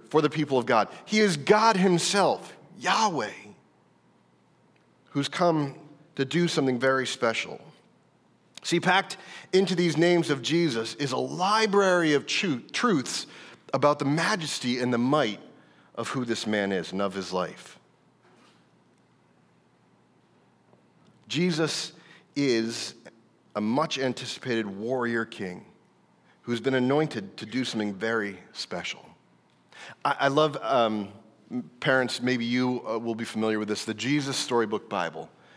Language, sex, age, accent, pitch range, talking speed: English, male, 40-59, American, 110-145 Hz, 125 wpm